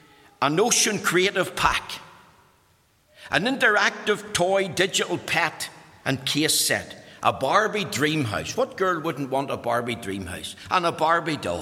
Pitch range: 155-230 Hz